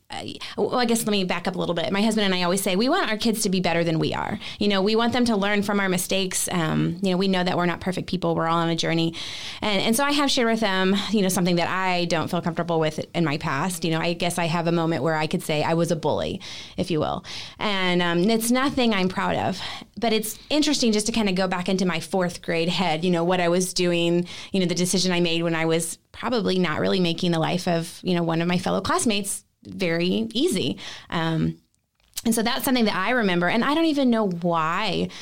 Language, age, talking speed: English, 20-39, 270 wpm